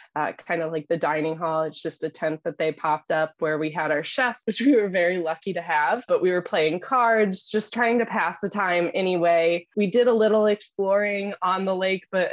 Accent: American